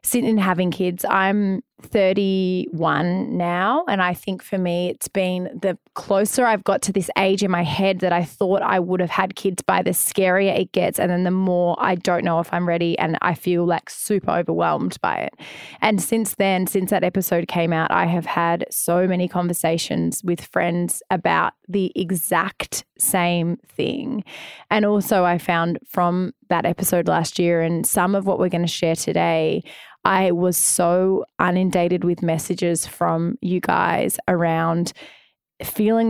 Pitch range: 175-200 Hz